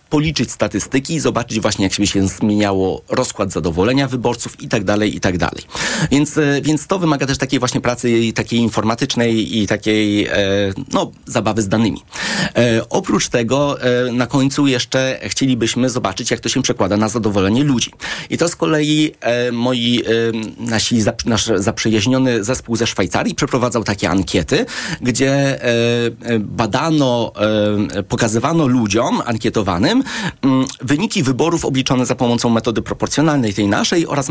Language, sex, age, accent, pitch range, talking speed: Polish, male, 30-49, native, 110-140 Hz, 145 wpm